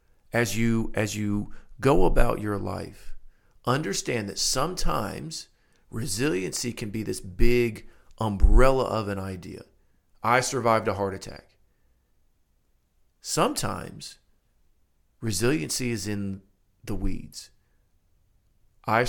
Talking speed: 100 wpm